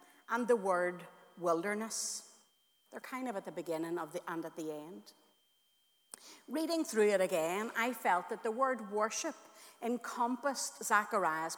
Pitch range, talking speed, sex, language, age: 180-270 Hz, 145 wpm, female, English, 60-79